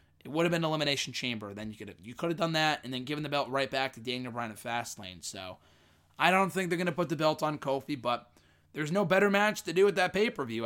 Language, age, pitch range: English, 20-39, 115-145 Hz